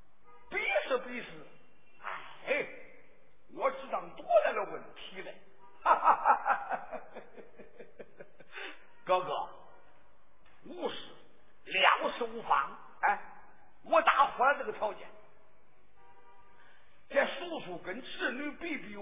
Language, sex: Chinese, male